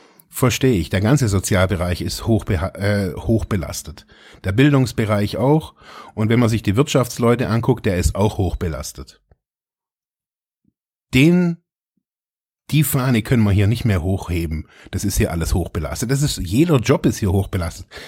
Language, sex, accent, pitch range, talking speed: German, male, German, 100-135 Hz, 145 wpm